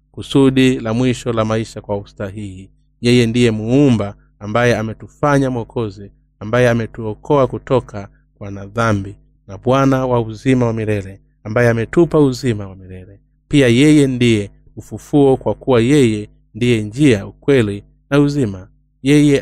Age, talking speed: 30-49, 130 wpm